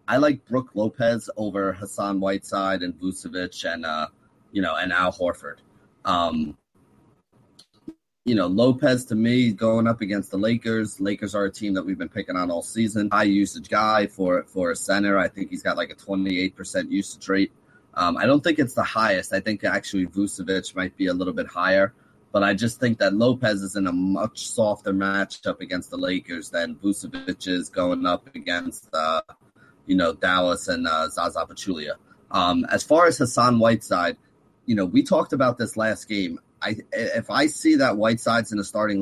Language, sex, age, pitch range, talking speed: English, male, 30-49, 100-120 Hz, 195 wpm